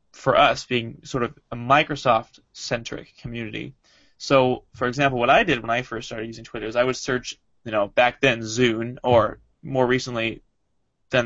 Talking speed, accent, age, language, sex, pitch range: 180 wpm, American, 20-39, English, male, 115-140 Hz